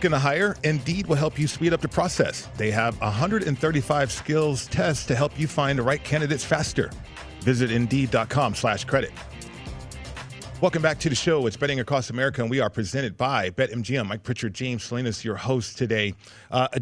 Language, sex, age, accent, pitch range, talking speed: English, male, 40-59, American, 120-155 Hz, 180 wpm